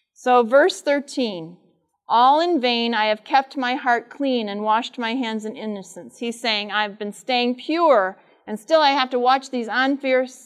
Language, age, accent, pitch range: English, 40-59, American, 220-270 Hz